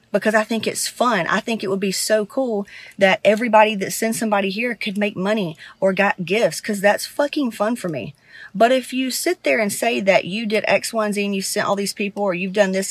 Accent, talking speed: American, 245 wpm